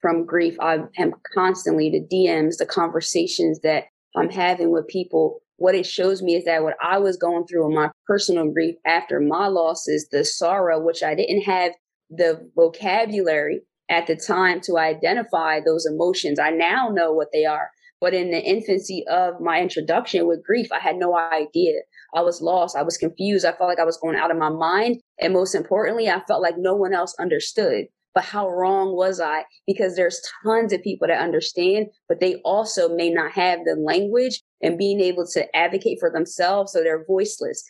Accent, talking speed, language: American, 195 wpm, English